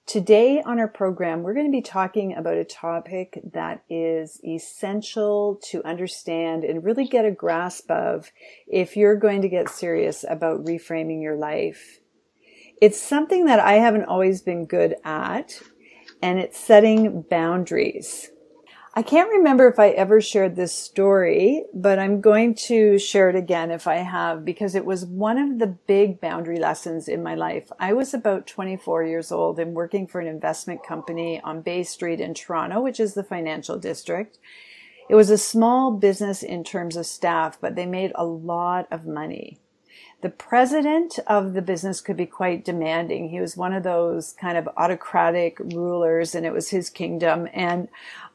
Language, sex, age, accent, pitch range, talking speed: English, female, 40-59, American, 170-210 Hz, 170 wpm